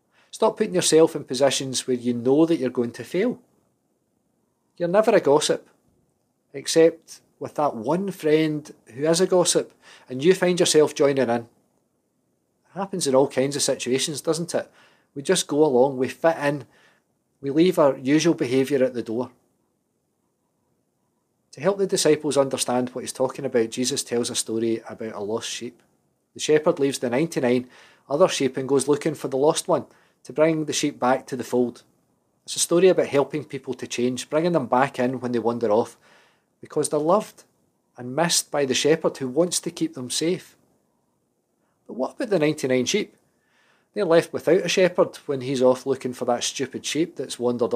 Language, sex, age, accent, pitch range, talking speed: English, male, 40-59, British, 125-165 Hz, 185 wpm